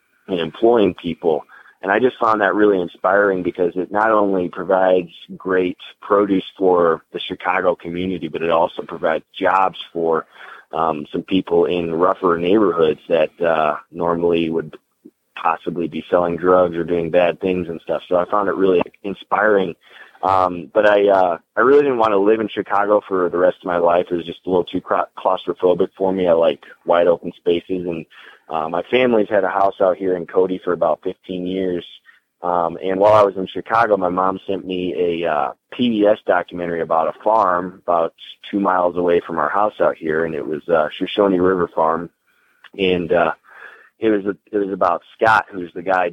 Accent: American